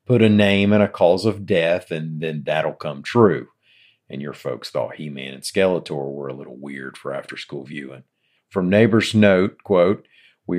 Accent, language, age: American, English, 50-69